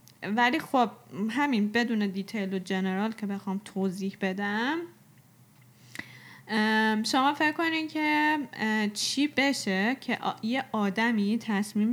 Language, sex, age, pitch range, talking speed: Persian, female, 10-29, 195-245 Hz, 105 wpm